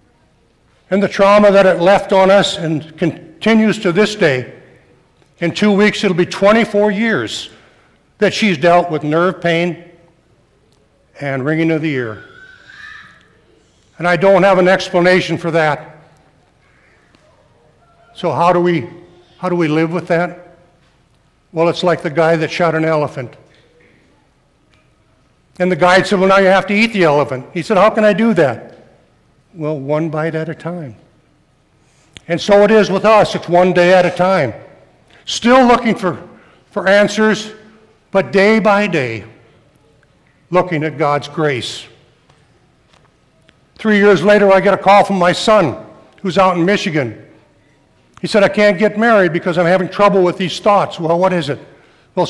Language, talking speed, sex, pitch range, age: English, 160 wpm, male, 155-195 Hz, 60-79